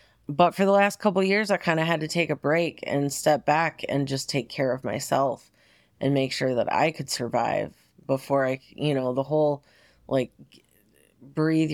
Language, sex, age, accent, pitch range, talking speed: English, female, 30-49, American, 135-185 Hz, 200 wpm